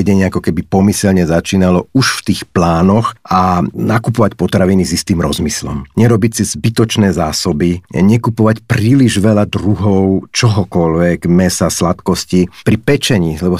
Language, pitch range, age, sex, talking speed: Slovak, 90-110 Hz, 50-69, male, 125 wpm